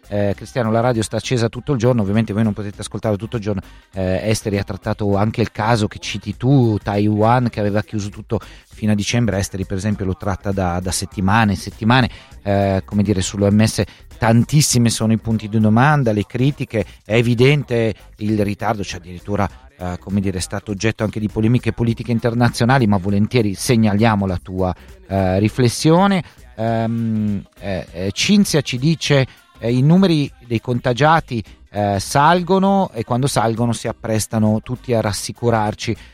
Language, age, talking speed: Italian, 30-49, 170 wpm